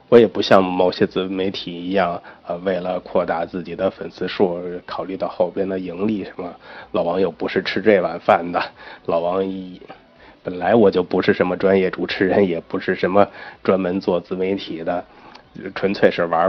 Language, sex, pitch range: Chinese, male, 90-100 Hz